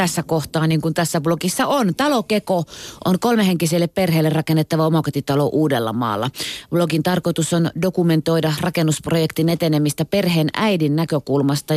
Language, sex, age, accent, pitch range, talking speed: Finnish, female, 30-49, native, 145-180 Hz, 125 wpm